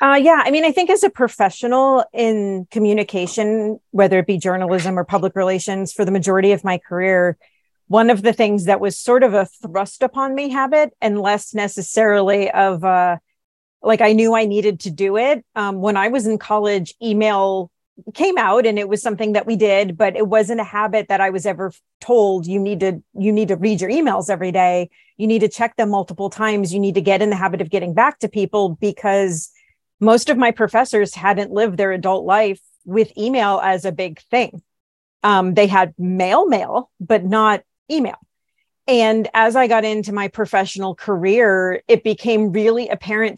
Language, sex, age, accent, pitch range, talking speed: English, female, 40-59, American, 190-220 Hz, 195 wpm